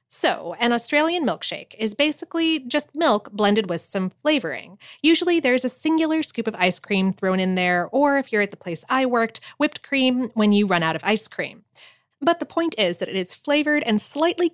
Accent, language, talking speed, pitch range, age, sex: American, English, 205 wpm, 190-295 Hz, 20-39, female